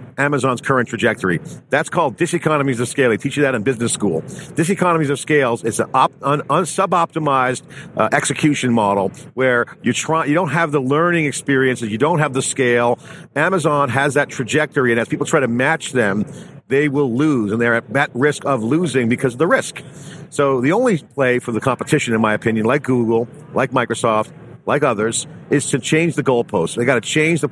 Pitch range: 120-155 Hz